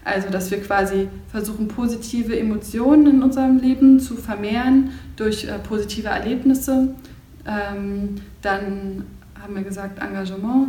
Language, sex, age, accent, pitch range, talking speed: German, female, 20-39, German, 200-235 Hz, 125 wpm